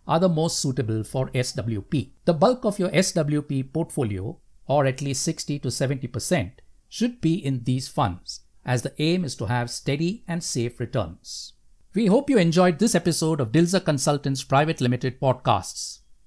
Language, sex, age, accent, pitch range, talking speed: English, male, 60-79, Indian, 130-185 Hz, 165 wpm